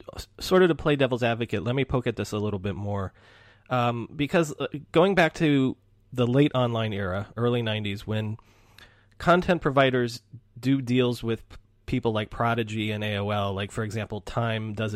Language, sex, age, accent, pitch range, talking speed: English, male, 30-49, American, 105-135 Hz, 170 wpm